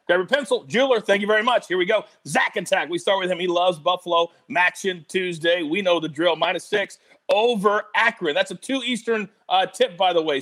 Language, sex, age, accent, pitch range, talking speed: English, male, 40-59, American, 180-245 Hz, 225 wpm